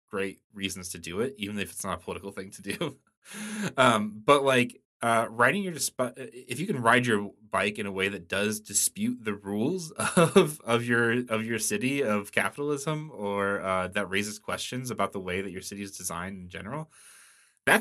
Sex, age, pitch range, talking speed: male, 20-39, 90-120 Hz, 195 wpm